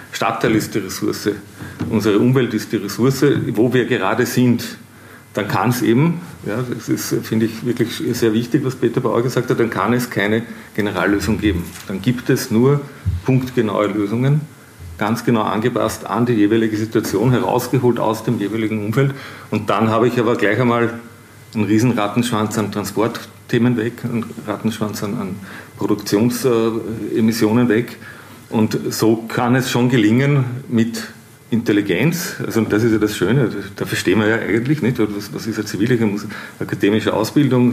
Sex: male